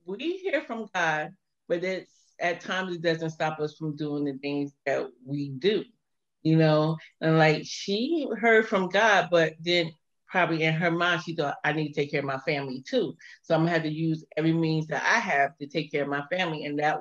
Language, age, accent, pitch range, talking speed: English, 30-49, American, 150-175 Hz, 220 wpm